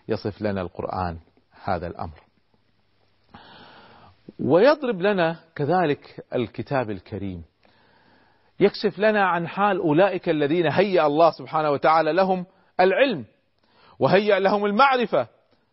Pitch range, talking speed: 130-205 Hz, 95 wpm